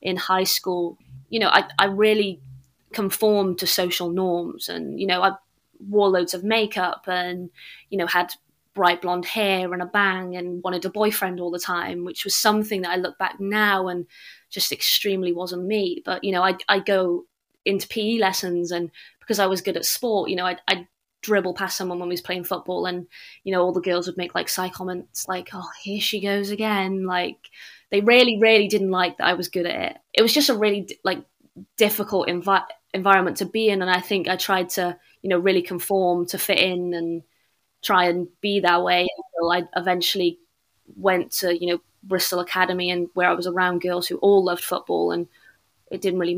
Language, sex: English, female